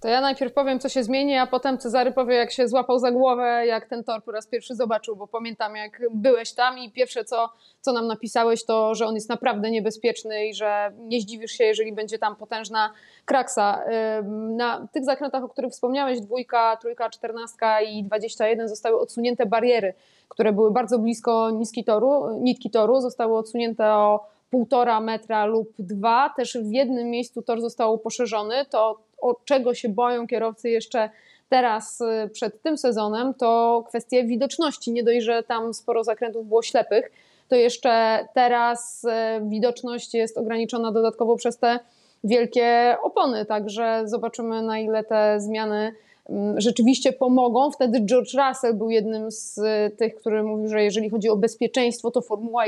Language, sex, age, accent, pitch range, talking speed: Polish, female, 20-39, native, 220-250 Hz, 165 wpm